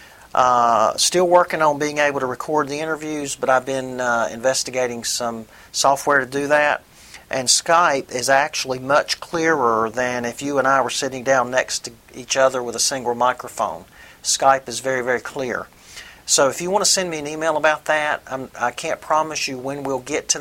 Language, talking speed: English, 195 wpm